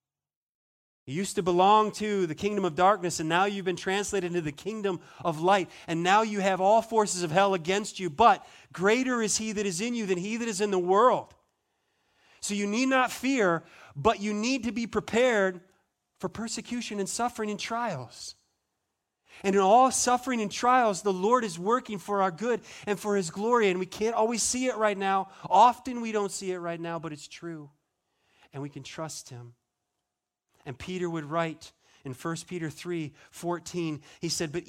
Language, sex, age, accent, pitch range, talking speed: English, male, 30-49, American, 170-215 Hz, 195 wpm